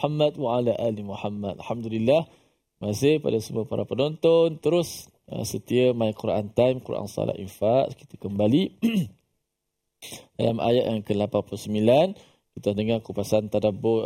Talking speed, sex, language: 125 wpm, male, Malayalam